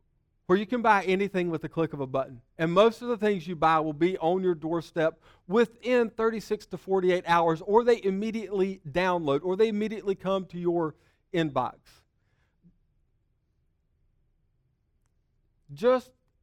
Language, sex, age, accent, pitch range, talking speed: English, male, 50-69, American, 155-210 Hz, 145 wpm